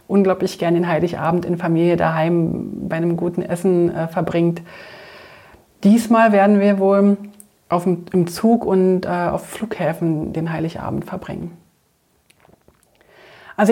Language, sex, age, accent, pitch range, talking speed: German, female, 30-49, German, 170-200 Hz, 120 wpm